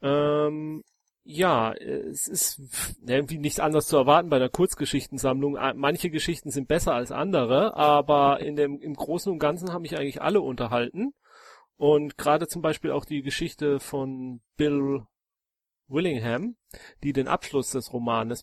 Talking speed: 145 wpm